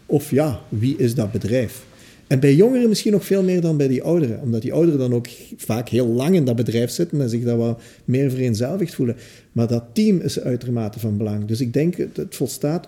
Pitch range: 120-170 Hz